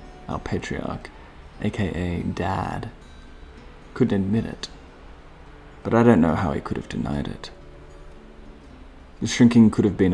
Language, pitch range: English, 75-105 Hz